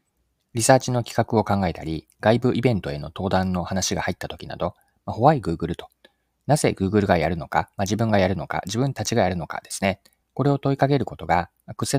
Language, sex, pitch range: Japanese, male, 90-130 Hz